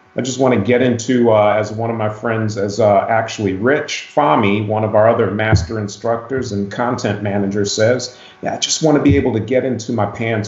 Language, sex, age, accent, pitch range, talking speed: English, male, 40-59, American, 105-135 Hz, 225 wpm